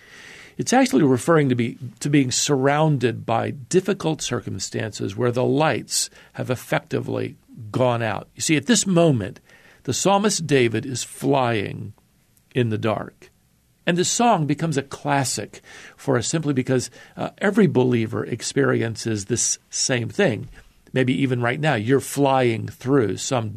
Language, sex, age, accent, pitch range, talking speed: English, male, 50-69, American, 115-150 Hz, 145 wpm